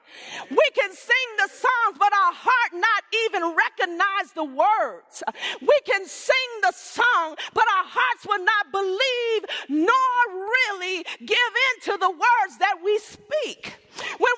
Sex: female